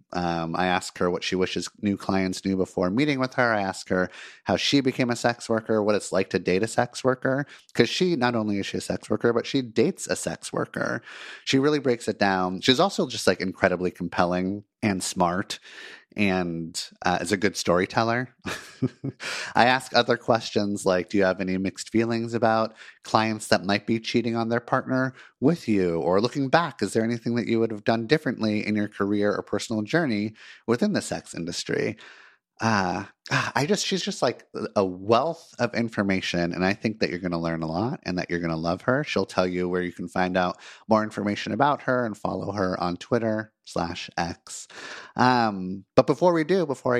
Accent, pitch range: American, 95-125 Hz